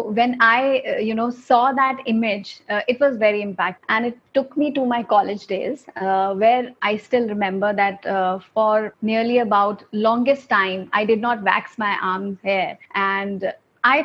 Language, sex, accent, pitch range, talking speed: Hindi, female, native, 200-245 Hz, 175 wpm